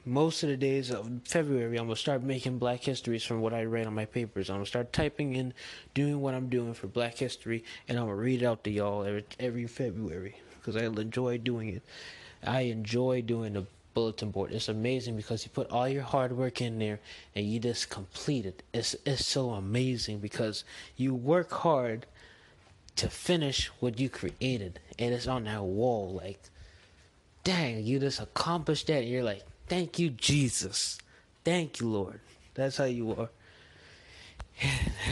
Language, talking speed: English, 190 wpm